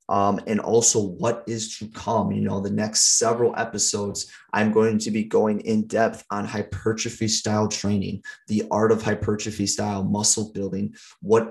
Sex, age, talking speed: male, 30-49, 165 wpm